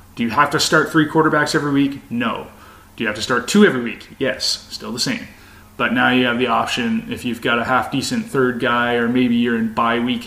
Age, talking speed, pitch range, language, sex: 20-39, 245 wpm, 115-150 Hz, English, male